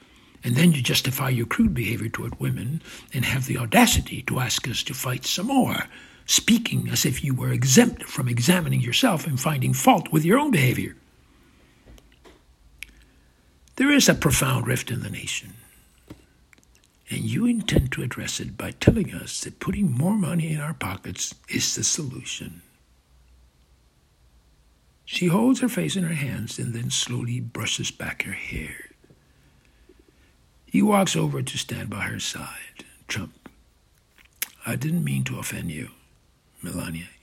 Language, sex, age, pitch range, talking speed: English, male, 60-79, 105-170 Hz, 150 wpm